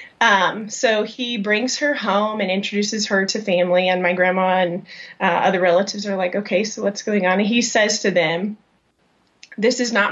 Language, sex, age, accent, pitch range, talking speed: English, female, 30-49, American, 195-240 Hz, 195 wpm